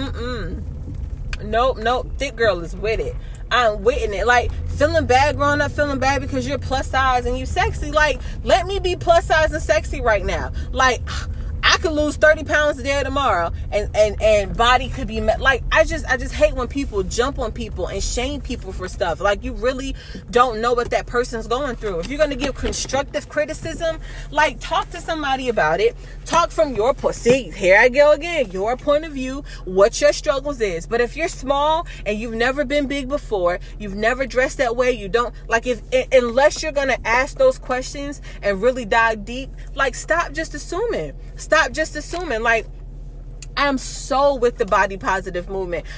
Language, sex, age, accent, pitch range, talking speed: English, female, 20-39, American, 240-310 Hz, 190 wpm